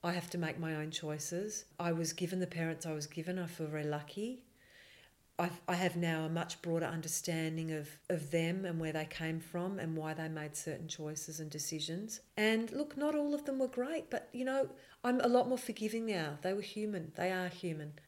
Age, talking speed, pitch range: 40-59, 220 wpm, 160-195 Hz